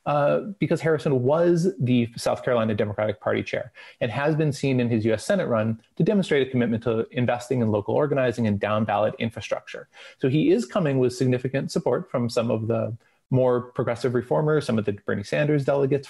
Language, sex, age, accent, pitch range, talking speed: English, male, 30-49, American, 115-155 Hz, 190 wpm